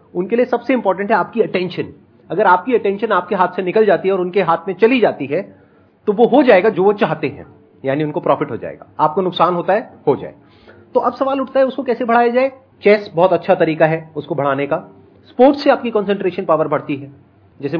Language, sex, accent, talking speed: Hindi, male, native, 140 wpm